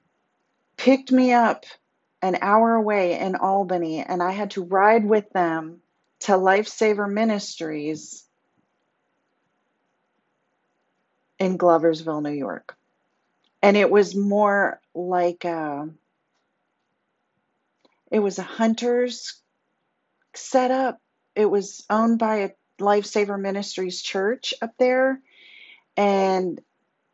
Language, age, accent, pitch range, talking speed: English, 40-59, American, 180-220 Hz, 95 wpm